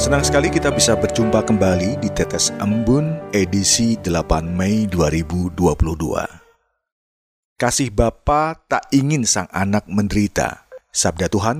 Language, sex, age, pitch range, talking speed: Indonesian, male, 40-59, 90-130 Hz, 115 wpm